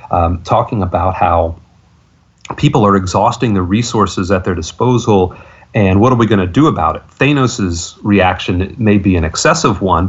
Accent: American